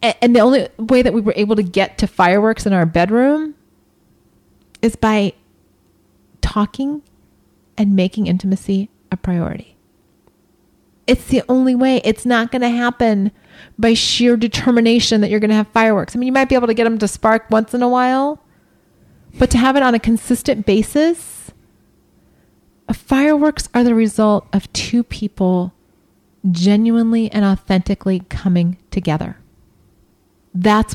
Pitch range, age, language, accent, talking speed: 180-245 Hz, 30-49, English, American, 150 wpm